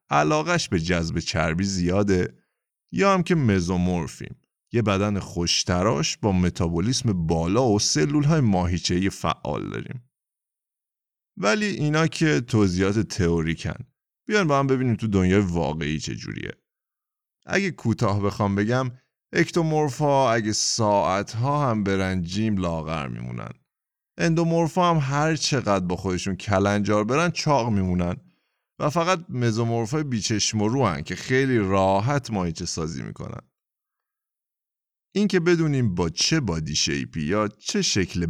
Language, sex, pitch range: Persian, male, 90-135 Hz